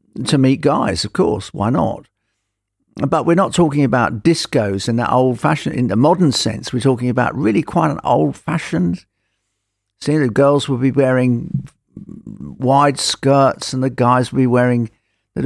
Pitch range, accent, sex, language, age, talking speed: 100-145 Hz, British, male, English, 50-69, 170 wpm